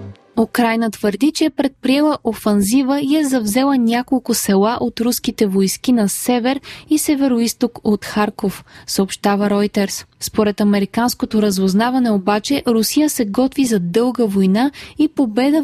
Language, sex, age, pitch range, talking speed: Bulgarian, female, 20-39, 210-260 Hz, 130 wpm